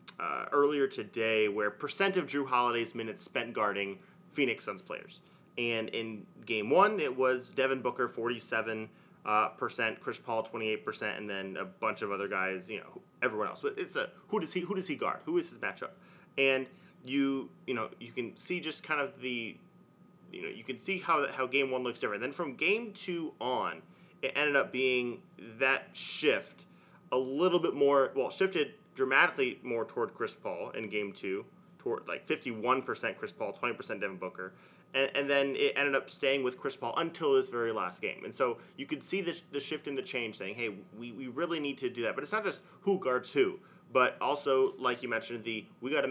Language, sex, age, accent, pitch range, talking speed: English, male, 30-49, American, 115-180 Hz, 210 wpm